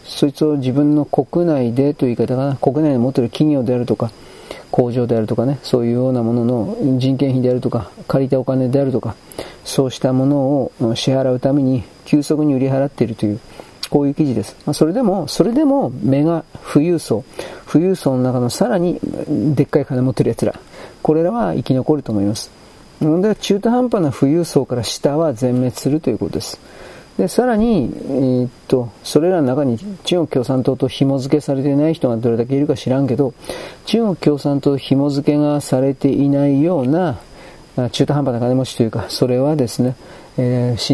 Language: Japanese